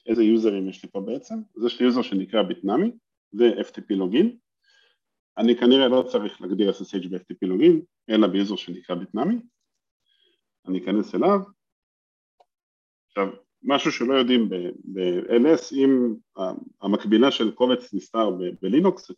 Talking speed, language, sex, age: 130 wpm, Hebrew, male, 40-59